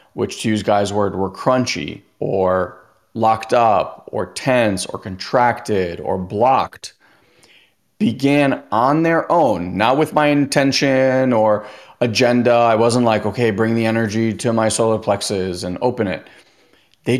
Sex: male